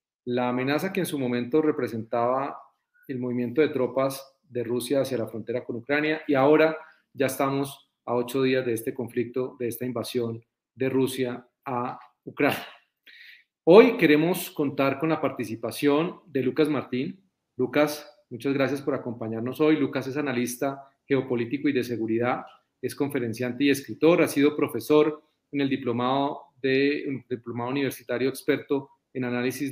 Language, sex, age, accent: Spanish, male, 40-59, Colombian